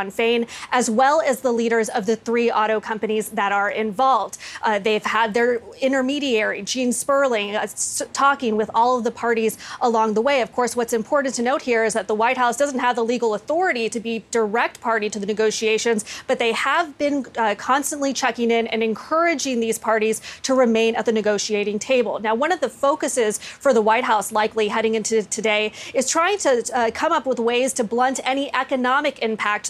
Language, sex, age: English, female, 20-39